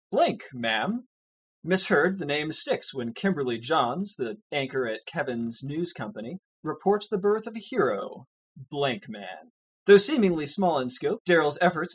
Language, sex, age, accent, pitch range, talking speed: English, male, 30-49, American, 125-190 Hz, 150 wpm